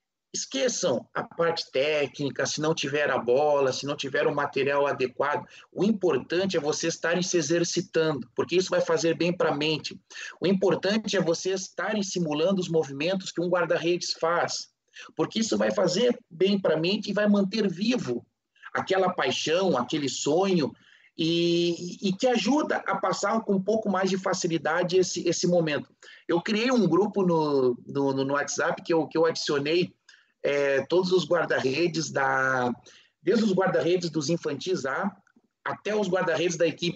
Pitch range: 155-190 Hz